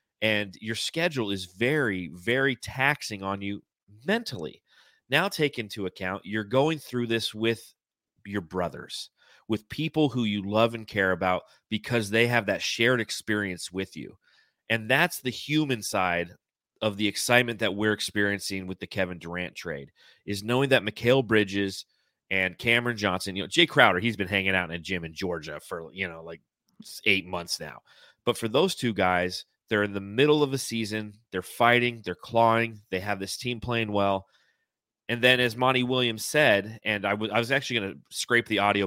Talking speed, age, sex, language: 185 wpm, 30-49, male, English